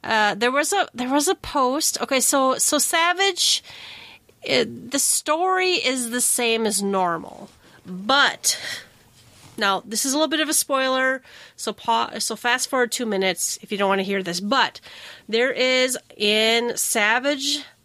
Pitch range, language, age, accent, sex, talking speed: 210-275 Hz, English, 30-49, American, female, 165 wpm